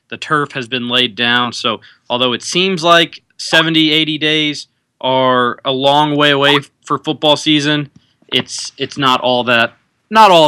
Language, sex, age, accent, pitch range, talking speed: English, male, 20-39, American, 120-150 Hz, 165 wpm